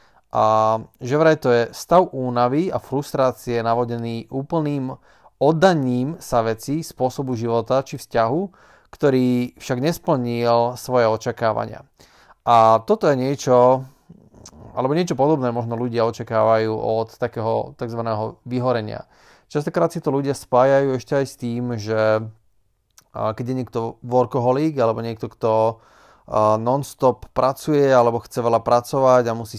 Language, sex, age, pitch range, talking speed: Slovak, male, 30-49, 115-135 Hz, 130 wpm